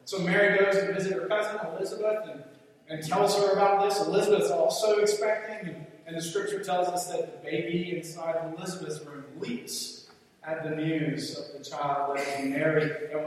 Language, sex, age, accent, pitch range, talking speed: English, male, 30-49, American, 155-200 Hz, 175 wpm